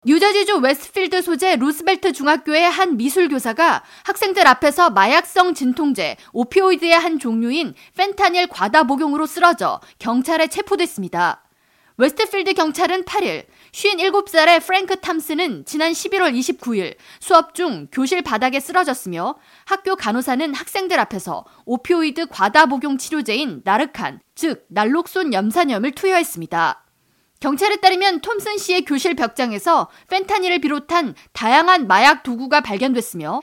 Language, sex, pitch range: Korean, female, 265-365 Hz